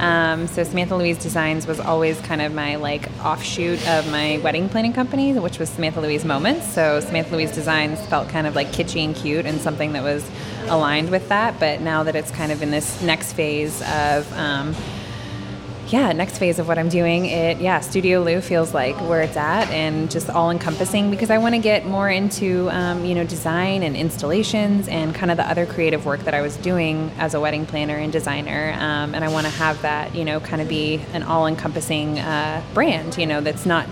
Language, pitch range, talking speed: English, 150-175 Hz, 215 wpm